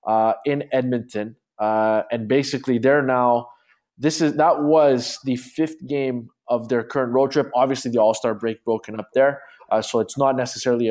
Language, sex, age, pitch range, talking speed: English, male, 20-39, 120-155 Hz, 175 wpm